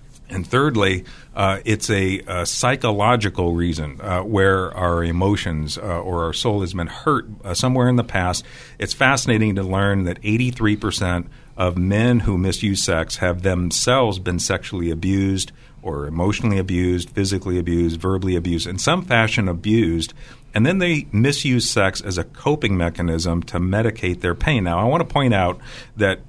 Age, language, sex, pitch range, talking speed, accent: 50-69, English, male, 90-120 Hz, 160 wpm, American